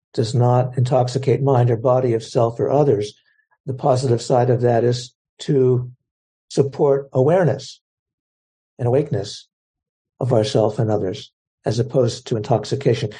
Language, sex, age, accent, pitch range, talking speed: English, male, 60-79, American, 115-140 Hz, 130 wpm